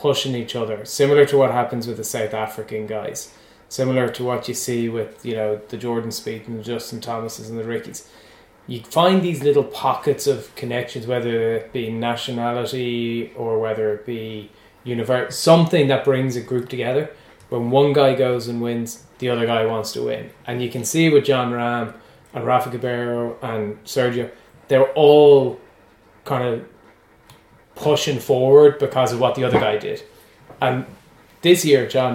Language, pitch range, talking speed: English, 115-135 Hz, 175 wpm